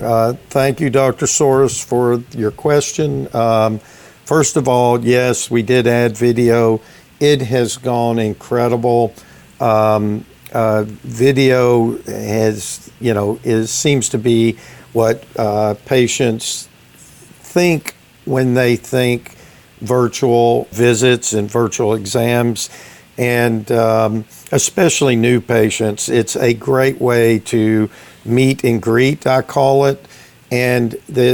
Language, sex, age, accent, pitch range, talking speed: English, male, 50-69, American, 115-130 Hz, 115 wpm